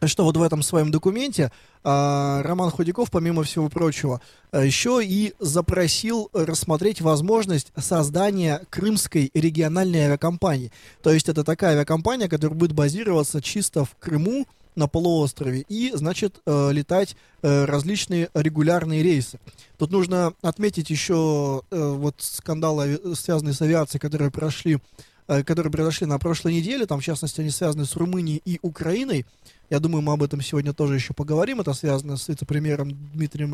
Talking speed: 150 wpm